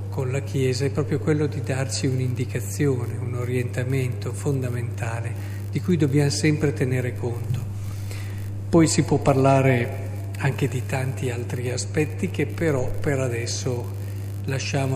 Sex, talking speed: male, 130 wpm